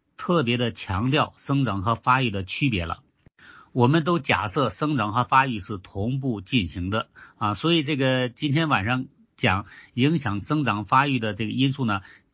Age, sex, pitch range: 50-69, male, 115-150 Hz